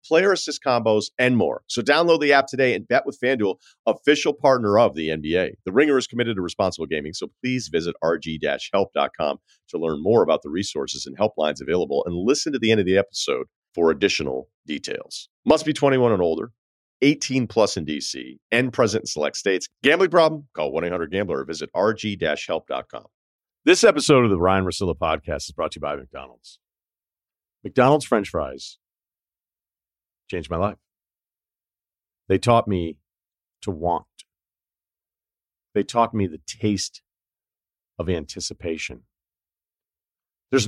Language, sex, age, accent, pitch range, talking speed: English, male, 40-59, American, 85-130 Hz, 150 wpm